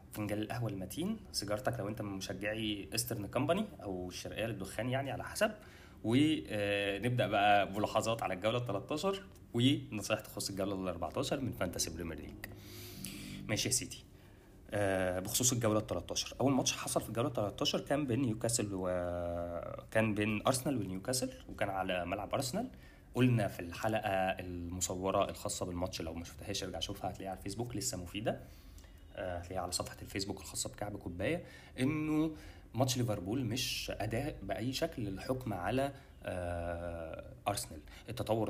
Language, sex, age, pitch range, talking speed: Arabic, male, 20-39, 95-110 Hz, 135 wpm